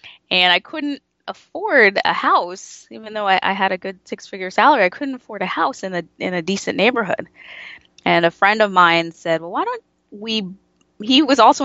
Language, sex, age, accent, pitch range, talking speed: English, female, 20-39, American, 165-215 Hz, 205 wpm